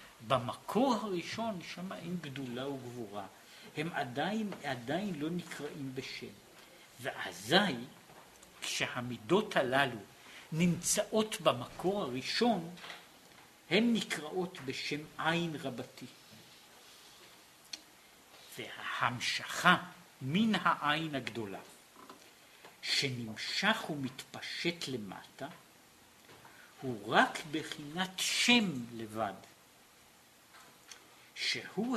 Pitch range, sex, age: 130-180 Hz, male, 60-79